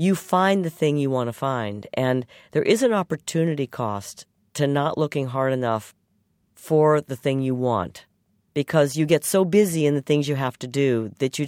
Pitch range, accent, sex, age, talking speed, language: 130-160 Hz, American, female, 50-69, 200 wpm, English